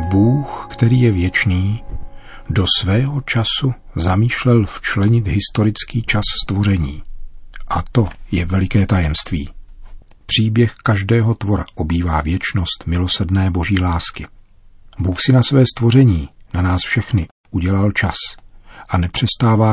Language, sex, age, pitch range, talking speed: Czech, male, 40-59, 90-110 Hz, 115 wpm